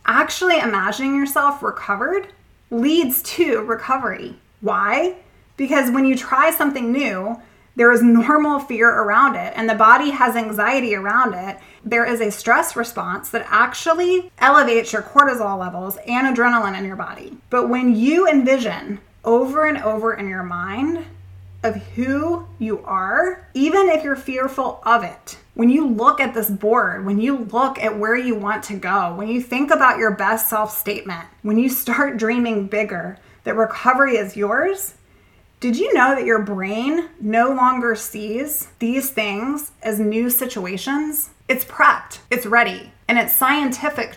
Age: 20-39